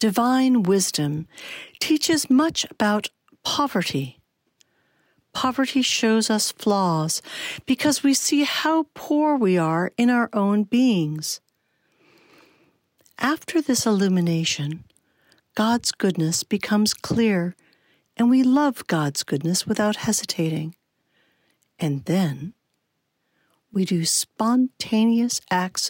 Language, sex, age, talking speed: English, female, 60-79, 95 wpm